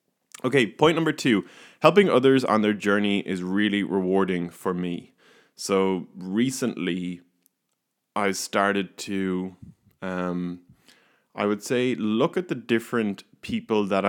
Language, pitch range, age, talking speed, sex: English, 90-110 Hz, 20-39, 125 wpm, male